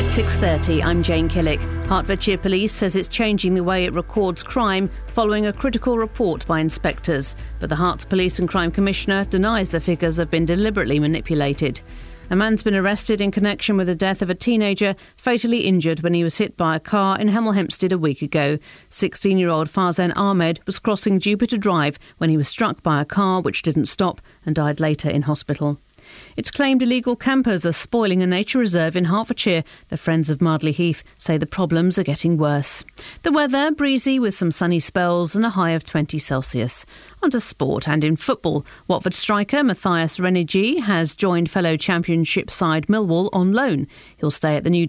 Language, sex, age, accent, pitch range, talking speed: English, female, 40-59, British, 160-205 Hz, 190 wpm